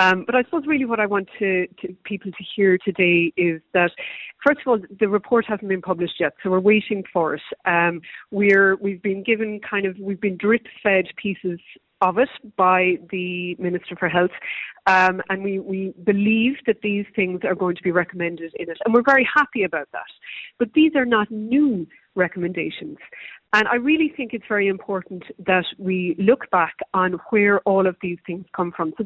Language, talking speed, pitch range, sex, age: English, 200 wpm, 185-230 Hz, female, 30-49